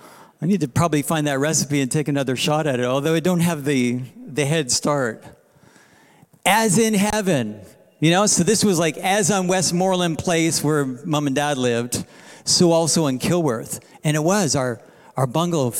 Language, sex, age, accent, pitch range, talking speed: English, male, 50-69, American, 140-185 Hz, 185 wpm